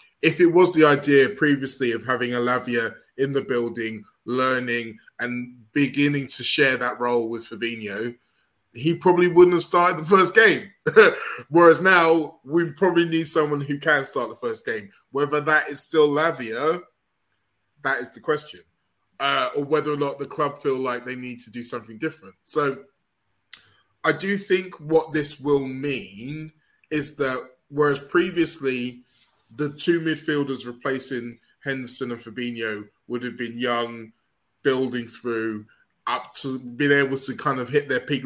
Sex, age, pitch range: male, 20-39, 120-155 Hz